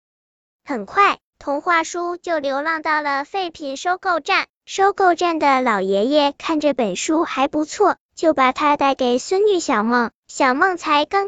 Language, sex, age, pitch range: Chinese, male, 10-29, 275-350 Hz